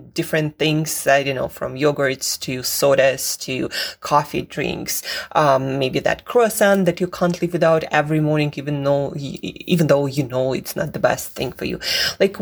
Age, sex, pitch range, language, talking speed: 20-39, female, 140-190 Hz, English, 180 wpm